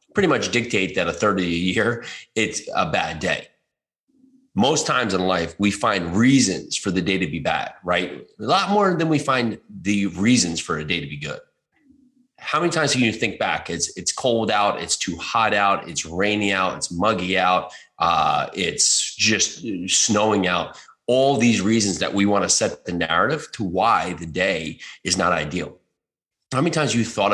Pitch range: 95-125 Hz